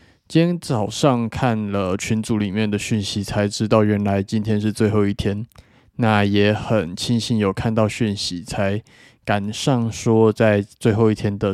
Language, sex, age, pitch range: Chinese, male, 20-39, 105-120 Hz